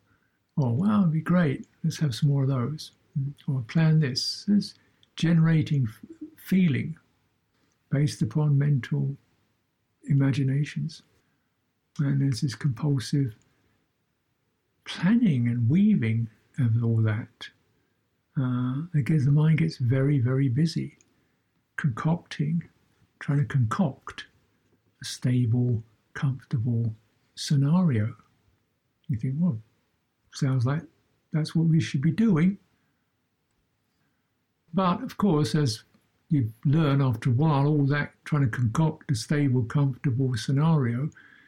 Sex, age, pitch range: male, 60-79, 120-160 Hz